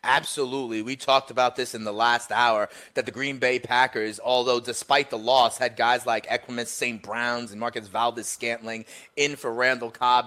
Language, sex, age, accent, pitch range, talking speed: English, male, 30-49, American, 115-140 Hz, 180 wpm